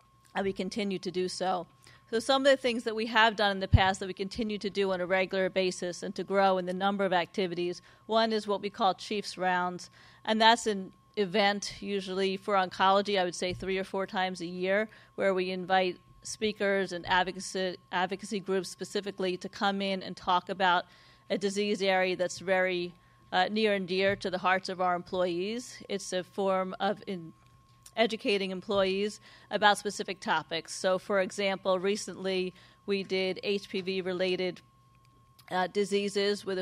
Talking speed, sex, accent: 175 wpm, female, American